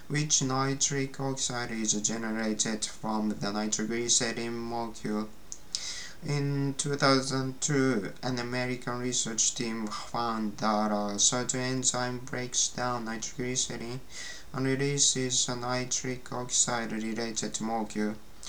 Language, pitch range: Japanese, 115-130 Hz